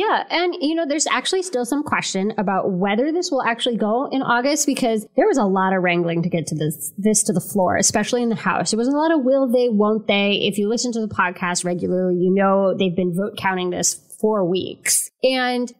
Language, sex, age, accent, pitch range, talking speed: English, female, 20-39, American, 195-255 Hz, 235 wpm